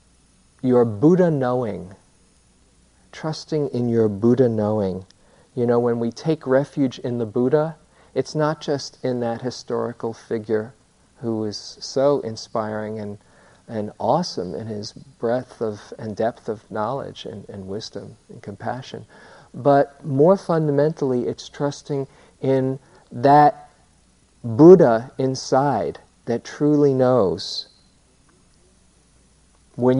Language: English